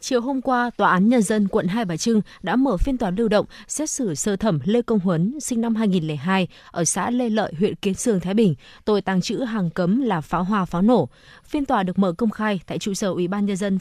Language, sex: Vietnamese, female